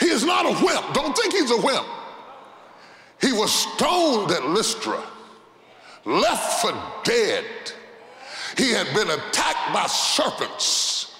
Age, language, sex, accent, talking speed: 40-59, English, female, American, 130 wpm